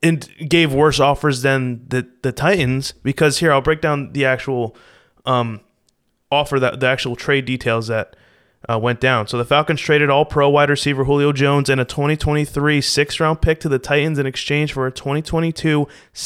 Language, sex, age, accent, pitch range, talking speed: English, male, 20-39, American, 130-160 Hz, 185 wpm